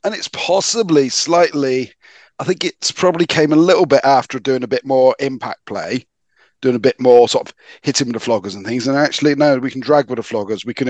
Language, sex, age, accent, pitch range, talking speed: English, male, 40-59, British, 125-150 Hz, 230 wpm